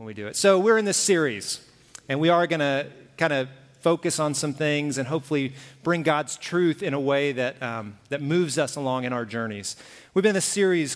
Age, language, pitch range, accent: 40-59, English, 125-155 Hz, American